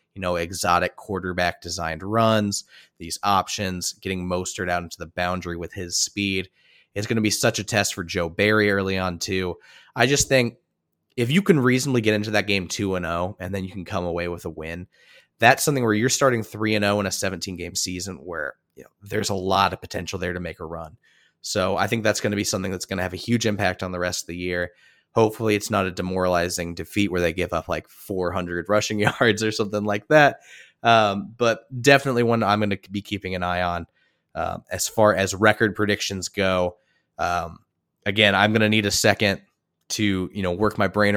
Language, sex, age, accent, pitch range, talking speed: English, male, 30-49, American, 90-110 Hz, 220 wpm